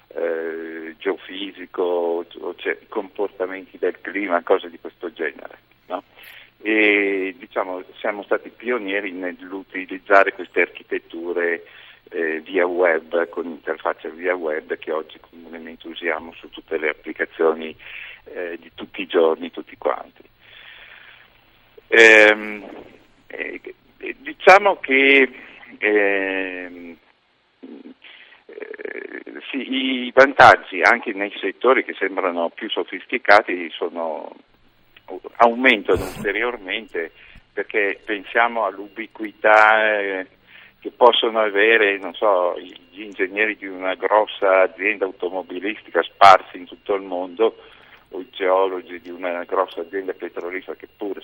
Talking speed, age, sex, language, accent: 105 wpm, 50-69, male, Italian, native